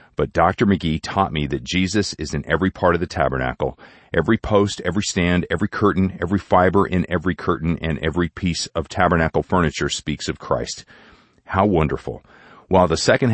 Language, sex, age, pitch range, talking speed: English, male, 40-59, 80-105 Hz, 175 wpm